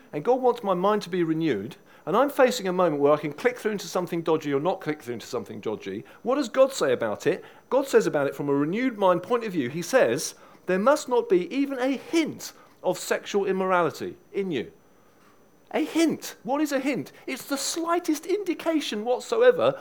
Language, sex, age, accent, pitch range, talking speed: English, male, 40-59, British, 150-250 Hz, 210 wpm